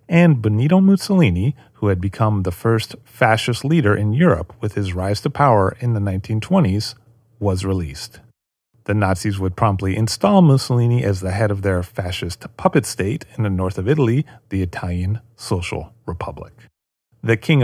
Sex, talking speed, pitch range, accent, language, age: male, 160 wpm, 95-125 Hz, American, English, 40-59